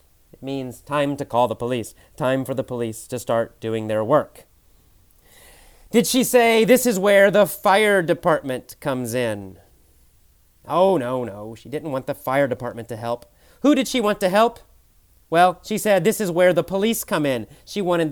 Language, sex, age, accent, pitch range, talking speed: English, male, 30-49, American, 115-180 Hz, 180 wpm